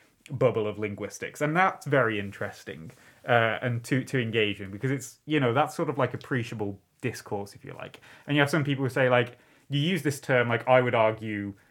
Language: English